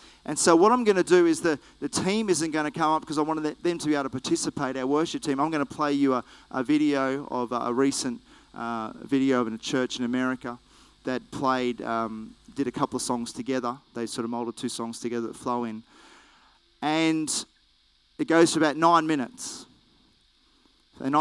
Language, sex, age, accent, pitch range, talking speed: English, male, 30-49, Australian, 125-150 Hz, 210 wpm